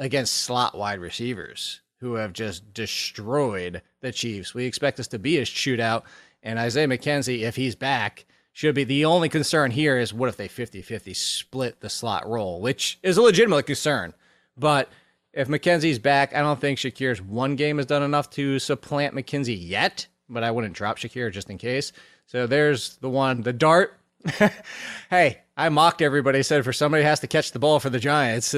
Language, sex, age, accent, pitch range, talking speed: English, male, 30-49, American, 125-170 Hz, 185 wpm